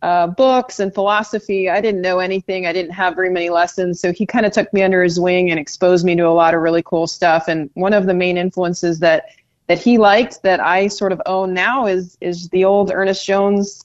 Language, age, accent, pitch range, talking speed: English, 30-49, American, 165-195 Hz, 240 wpm